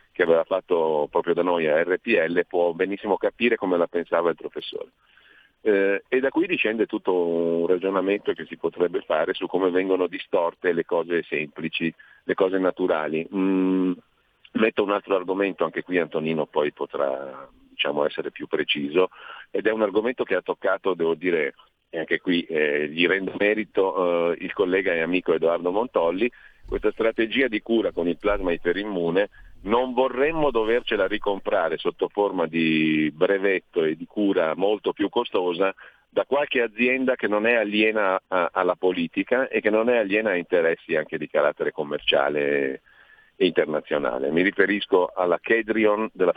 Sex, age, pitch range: male, 40-59, 85-125 Hz